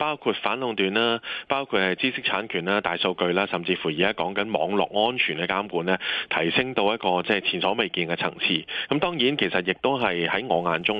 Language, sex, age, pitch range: Chinese, male, 20-39, 90-110 Hz